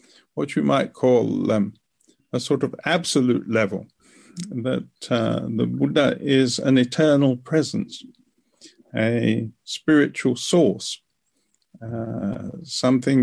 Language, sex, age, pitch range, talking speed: English, male, 50-69, 120-155 Hz, 110 wpm